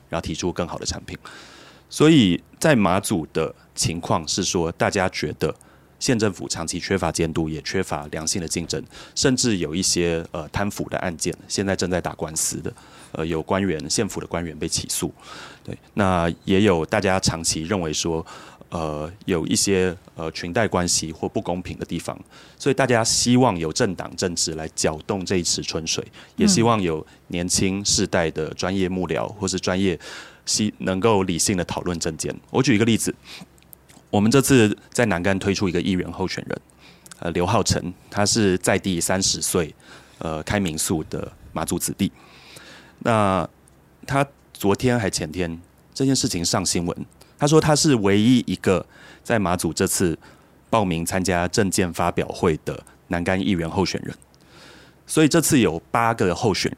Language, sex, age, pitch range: Chinese, male, 30-49, 85-105 Hz